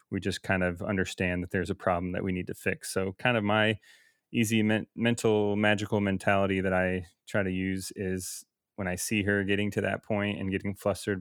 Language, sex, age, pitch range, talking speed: English, male, 30-49, 95-105 Hz, 215 wpm